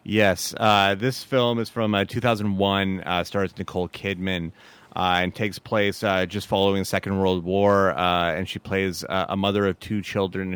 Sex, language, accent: male, English, American